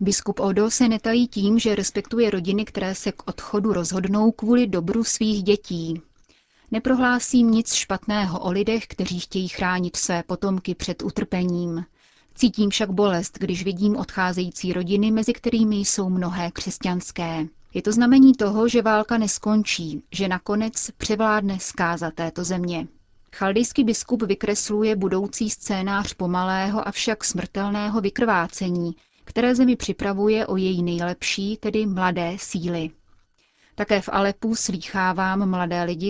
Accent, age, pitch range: native, 30-49, 180-215 Hz